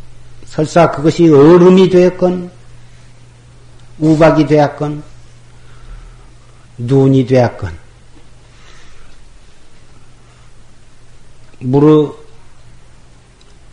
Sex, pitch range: male, 120-165 Hz